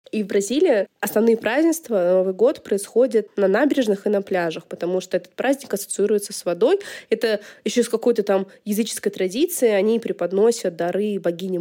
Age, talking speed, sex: 20-39, 160 wpm, female